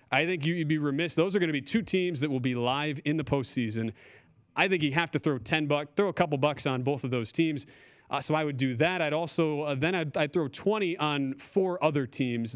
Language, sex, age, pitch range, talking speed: English, male, 30-49, 130-160 Hz, 260 wpm